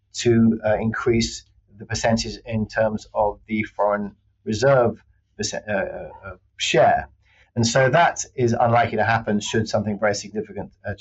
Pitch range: 100-125 Hz